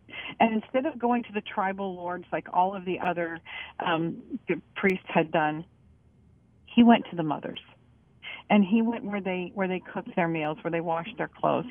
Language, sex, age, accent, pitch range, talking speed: English, female, 40-59, American, 175-225 Hz, 195 wpm